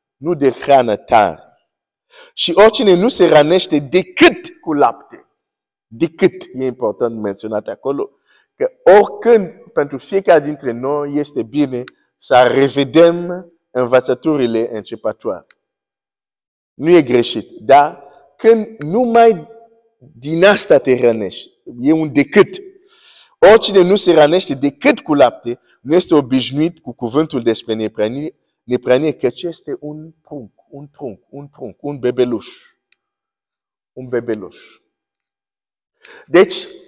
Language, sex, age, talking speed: Romanian, male, 50-69, 115 wpm